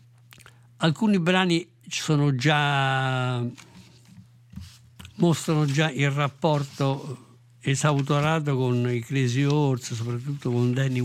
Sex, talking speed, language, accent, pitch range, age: male, 85 wpm, Italian, native, 125-150 Hz, 60-79